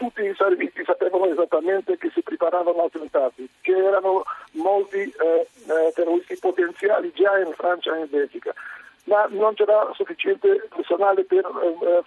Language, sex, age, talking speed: Italian, male, 50-69, 145 wpm